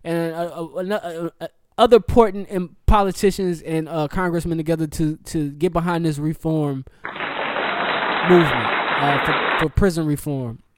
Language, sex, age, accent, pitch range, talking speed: English, male, 20-39, American, 145-175 Hz, 135 wpm